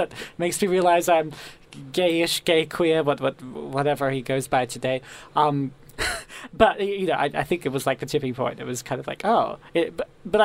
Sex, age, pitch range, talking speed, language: male, 20-39, 135-170 Hz, 195 wpm, English